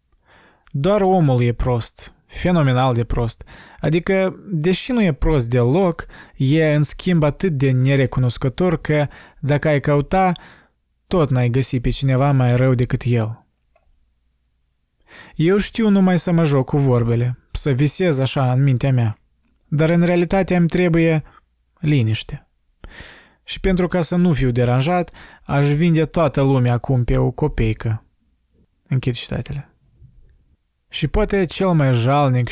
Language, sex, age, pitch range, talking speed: Romanian, male, 20-39, 120-150 Hz, 135 wpm